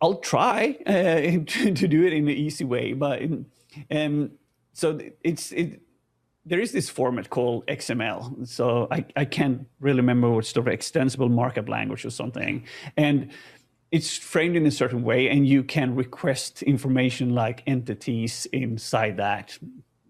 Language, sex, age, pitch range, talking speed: English, male, 30-49, 120-150 Hz, 155 wpm